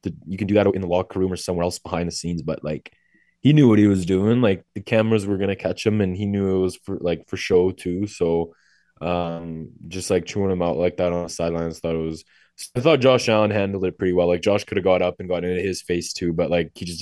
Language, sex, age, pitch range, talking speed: English, male, 20-39, 85-100 Hz, 280 wpm